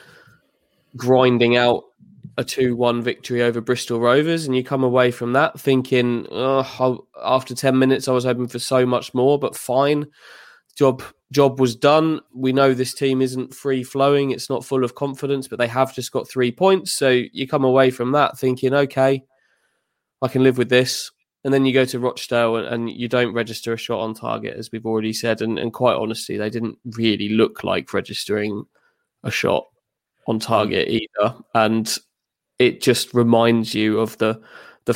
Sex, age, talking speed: male, 20-39, 175 wpm